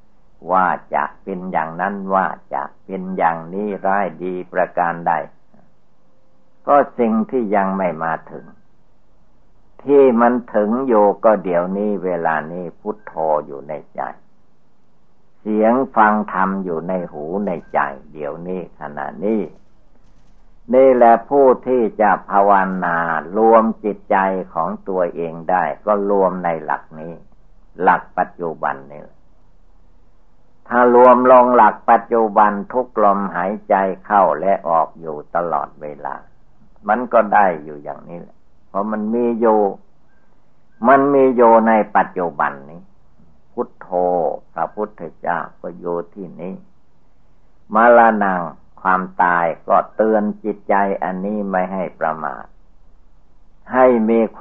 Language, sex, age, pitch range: Thai, male, 60-79, 85-110 Hz